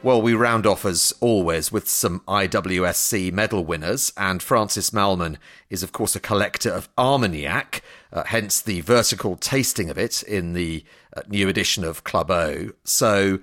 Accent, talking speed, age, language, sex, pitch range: British, 165 wpm, 40-59, English, male, 95-120 Hz